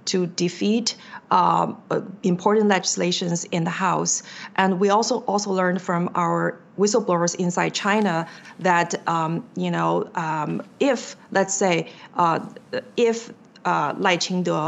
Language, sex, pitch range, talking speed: English, female, 175-205 Hz, 125 wpm